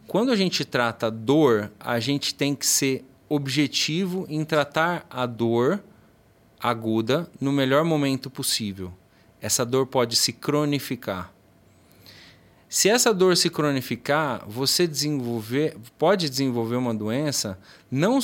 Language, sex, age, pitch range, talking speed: Portuguese, male, 30-49, 120-160 Hz, 120 wpm